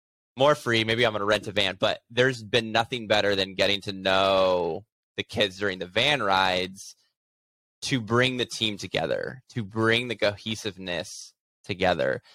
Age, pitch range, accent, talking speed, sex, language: 10-29, 100-115 Hz, American, 165 wpm, male, English